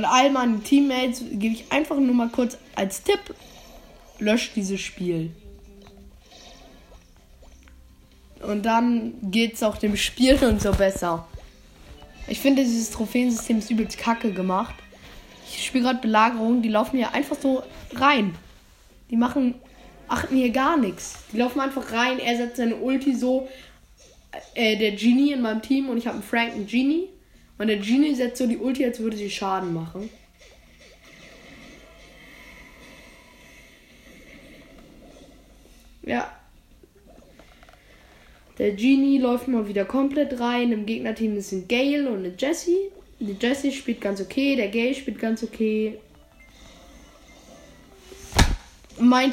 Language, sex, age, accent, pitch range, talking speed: German, female, 10-29, German, 205-260 Hz, 130 wpm